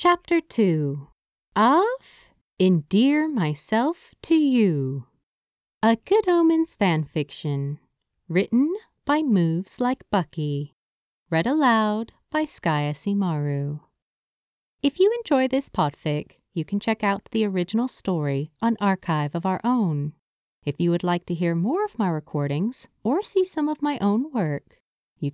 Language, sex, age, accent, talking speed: English, female, 30-49, American, 135 wpm